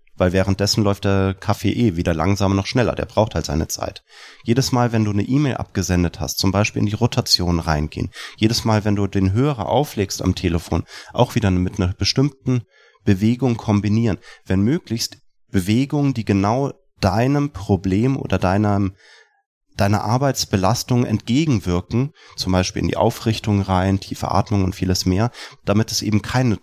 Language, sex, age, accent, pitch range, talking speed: German, male, 30-49, German, 100-125 Hz, 160 wpm